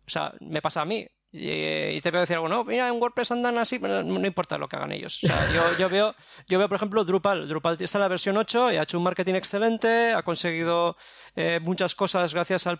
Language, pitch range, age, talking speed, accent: Spanish, 160-205 Hz, 20-39, 265 wpm, Spanish